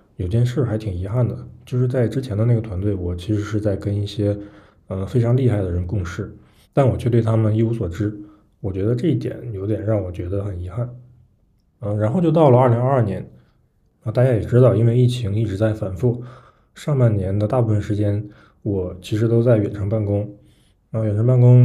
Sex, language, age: male, Chinese, 20-39